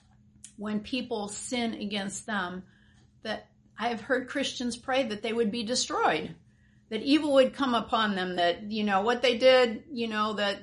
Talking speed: 175 wpm